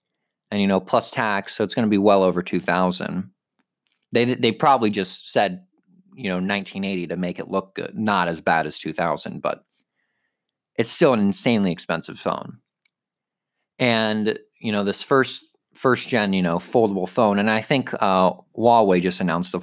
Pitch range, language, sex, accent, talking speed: 90-125 Hz, English, male, American, 175 wpm